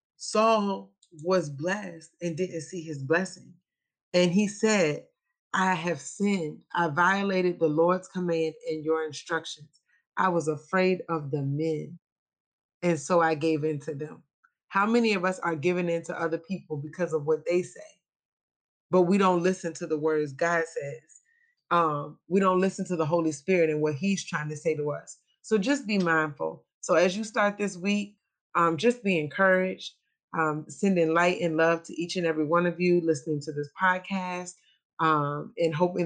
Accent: American